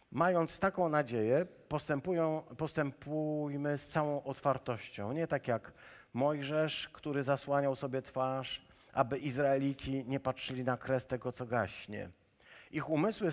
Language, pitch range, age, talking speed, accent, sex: Polish, 130-165 Hz, 50-69, 115 wpm, native, male